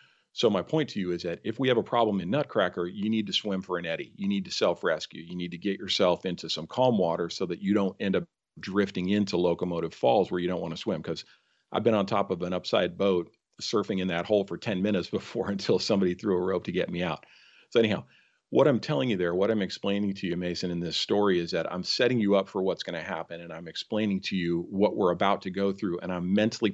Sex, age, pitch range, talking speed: male, 40-59, 90-110 Hz, 265 wpm